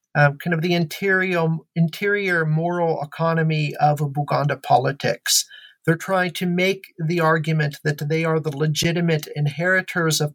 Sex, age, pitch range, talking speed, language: male, 40-59, 160-185 Hz, 145 wpm, English